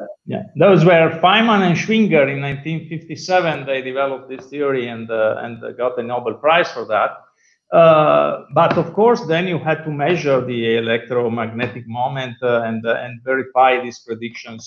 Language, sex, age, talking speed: English, male, 50-69, 165 wpm